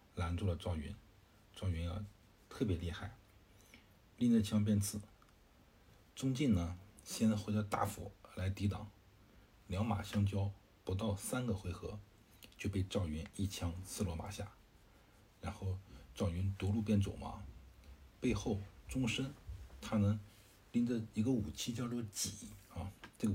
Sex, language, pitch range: male, Chinese, 95-110 Hz